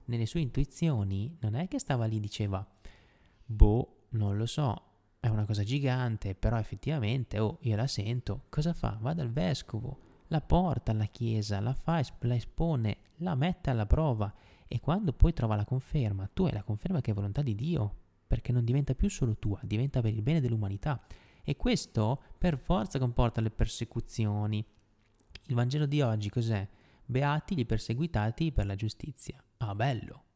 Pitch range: 105-140 Hz